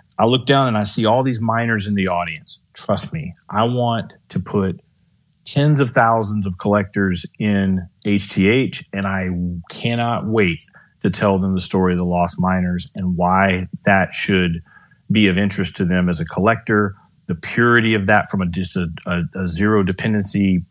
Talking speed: 180 wpm